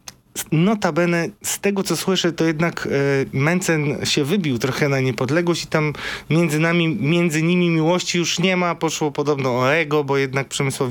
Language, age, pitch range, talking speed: Polish, 20-39, 135-175 Hz, 170 wpm